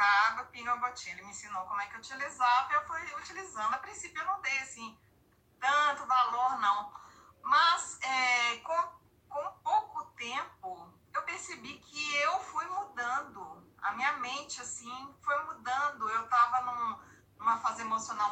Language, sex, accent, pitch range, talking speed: Portuguese, female, Brazilian, 225-290 Hz, 150 wpm